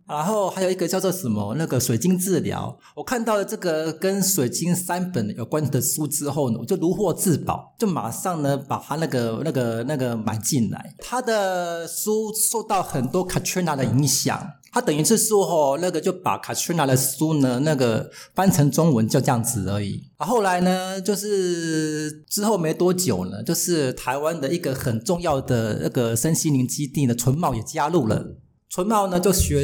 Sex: male